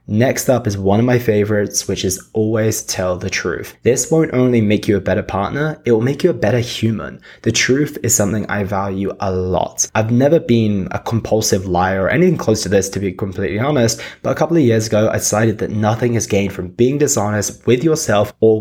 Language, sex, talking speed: English, male, 225 wpm